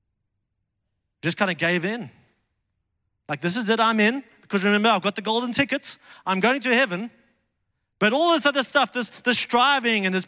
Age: 30-49